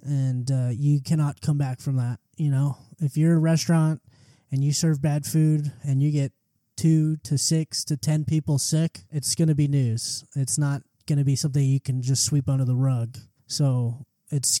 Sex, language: male, English